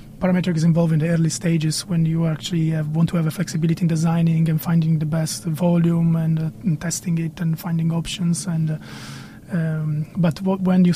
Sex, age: male, 20-39